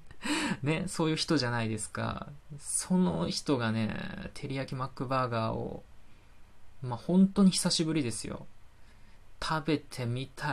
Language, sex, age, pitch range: Japanese, male, 20-39, 110-150 Hz